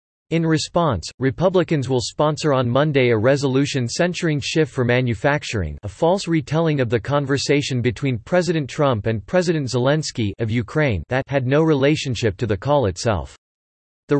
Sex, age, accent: male, 40-59, American